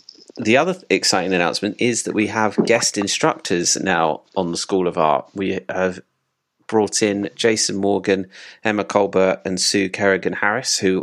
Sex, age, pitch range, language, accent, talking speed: male, 30-49, 90-100 Hz, English, British, 160 wpm